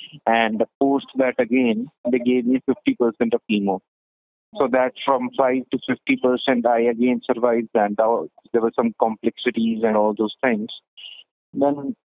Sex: male